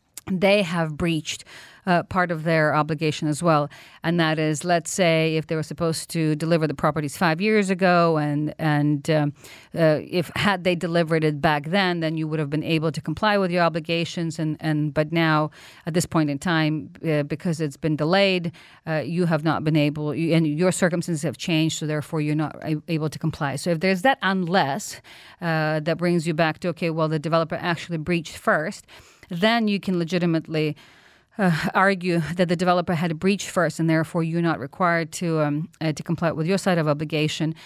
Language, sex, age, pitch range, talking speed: English, female, 40-59, 155-175 Hz, 205 wpm